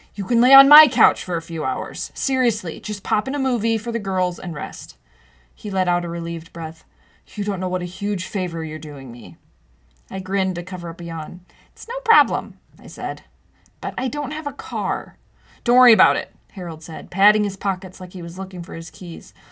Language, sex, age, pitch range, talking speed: English, female, 20-39, 170-220 Hz, 220 wpm